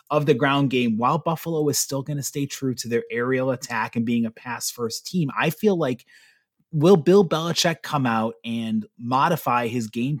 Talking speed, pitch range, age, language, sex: 200 wpm, 115-150 Hz, 30-49, English, male